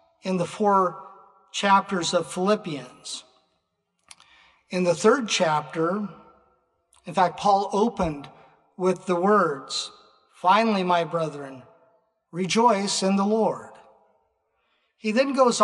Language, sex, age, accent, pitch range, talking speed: English, male, 50-69, American, 170-200 Hz, 105 wpm